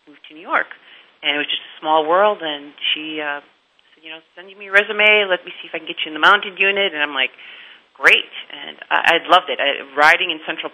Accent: American